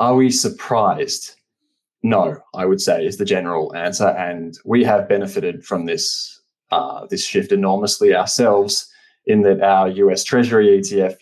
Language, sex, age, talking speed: English, male, 20-39, 145 wpm